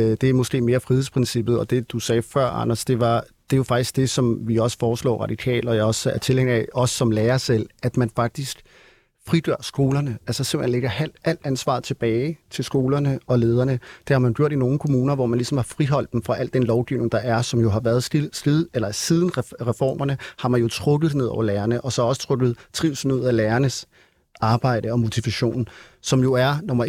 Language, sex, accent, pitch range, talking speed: Danish, male, native, 120-135 Hz, 220 wpm